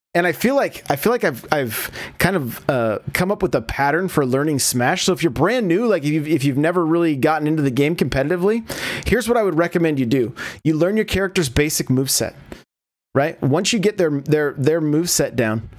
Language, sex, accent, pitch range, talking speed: English, male, American, 135-180 Hz, 230 wpm